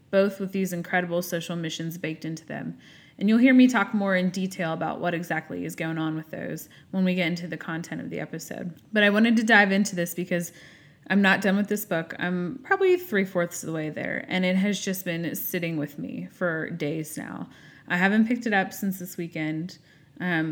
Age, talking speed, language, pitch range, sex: 20-39, 220 wpm, English, 160-195 Hz, female